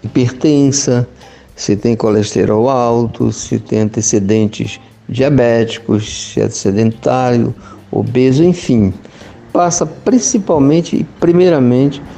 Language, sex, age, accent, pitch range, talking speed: Portuguese, male, 60-79, Brazilian, 110-150 Hz, 90 wpm